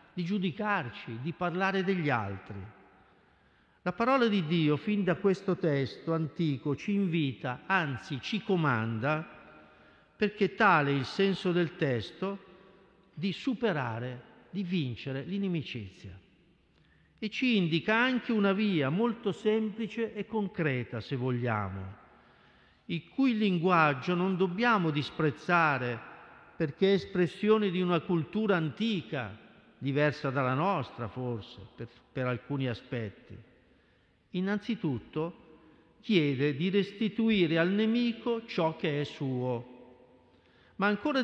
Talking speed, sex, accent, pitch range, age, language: 110 wpm, male, native, 140-200 Hz, 50-69, Italian